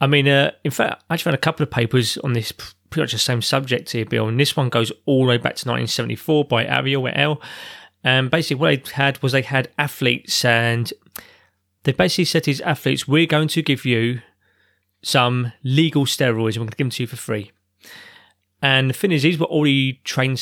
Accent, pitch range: British, 115-145 Hz